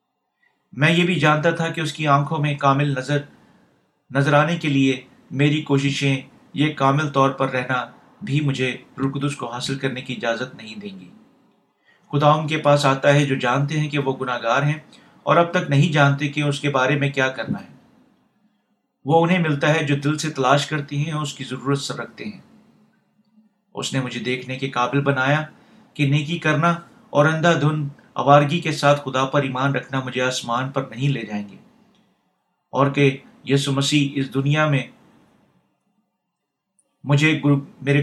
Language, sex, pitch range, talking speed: Urdu, male, 135-155 Hz, 175 wpm